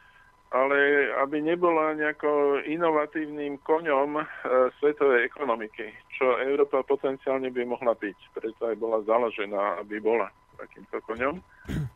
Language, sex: Slovak, male